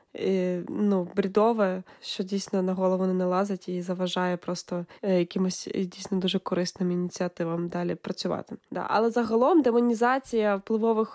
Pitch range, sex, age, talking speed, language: 195-225 Hz, female, 20-39, 130 wpm, Ukrainian